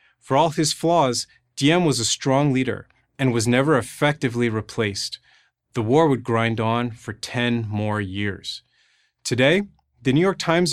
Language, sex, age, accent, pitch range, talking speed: English, male, 30-49, American, 115-140 Hz, 155 wpm